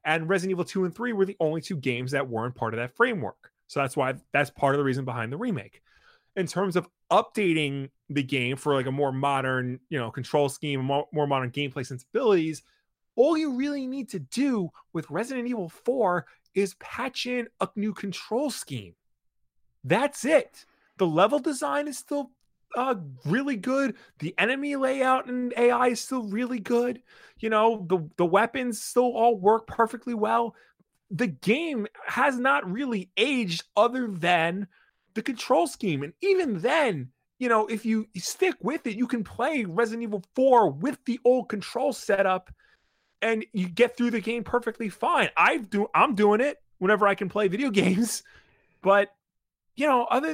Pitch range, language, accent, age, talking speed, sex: 165-250 Hz, English, American, 30-49, 180 wpm, male